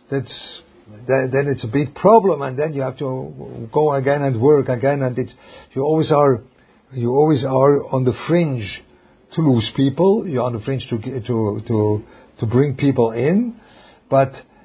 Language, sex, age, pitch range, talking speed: English, male, 50-69, 120-150 Hz, 170 wpm